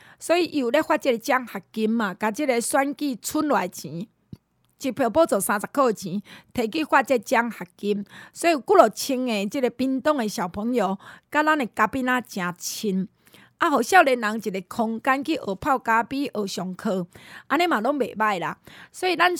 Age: 20-39